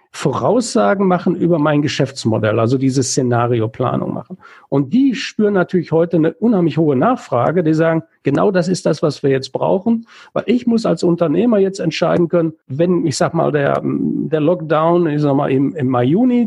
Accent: German